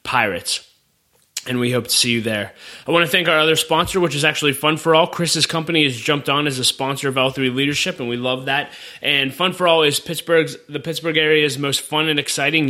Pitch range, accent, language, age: 125-155 Hz, American, English, 20-39